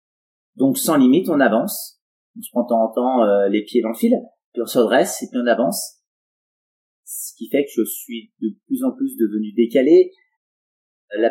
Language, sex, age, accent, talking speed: French, male, 30-49, French, 200 wpm